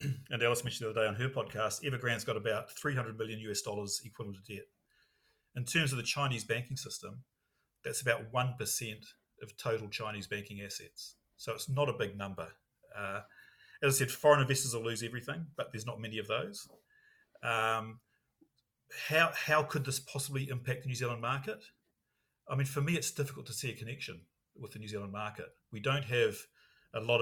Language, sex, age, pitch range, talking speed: English, male, 40-59, 105-130 Hz, 190 wpm